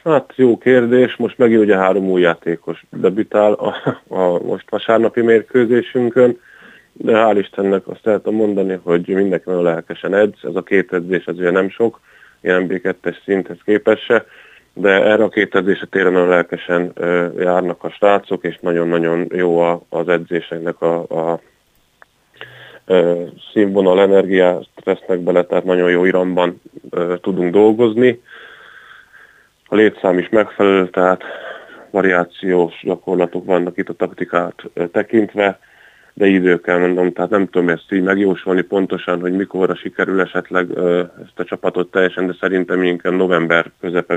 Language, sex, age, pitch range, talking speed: Hungarian, male, 20-39, 85-100 Hz, 135 wpm